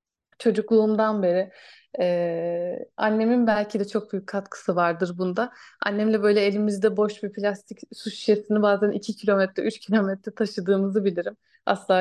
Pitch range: 195-280 Hz